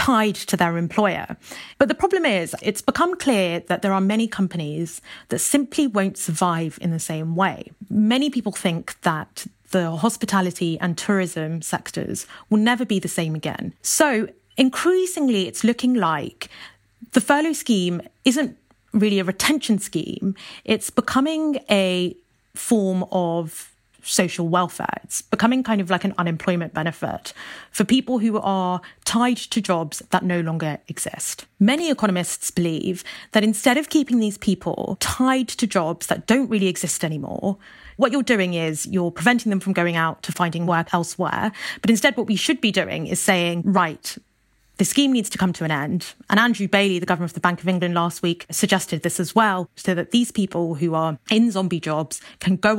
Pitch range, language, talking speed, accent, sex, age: 170-230 Hz, English, 175 wpm, British, female, 30-49